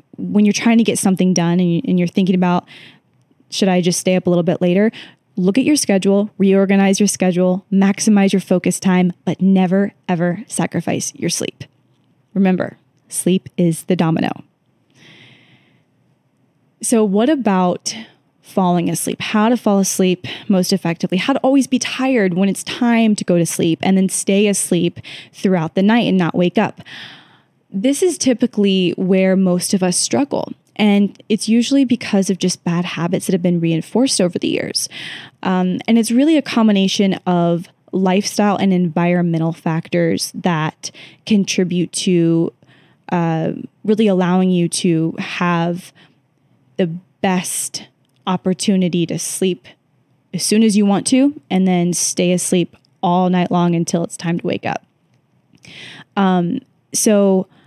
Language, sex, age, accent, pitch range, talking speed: English, female, 10-29, American, 175-205 Hz, 150 wpm